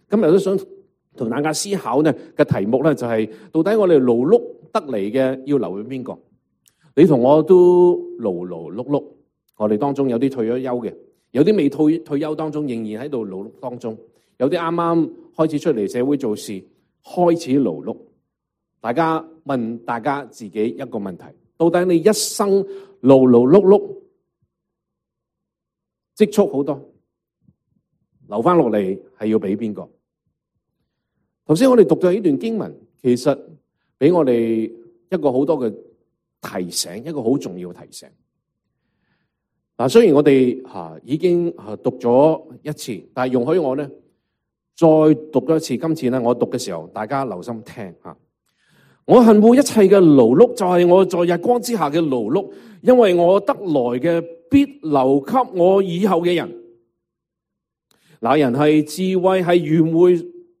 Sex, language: male, English